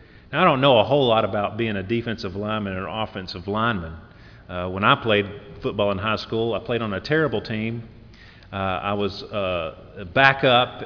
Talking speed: 190 wpm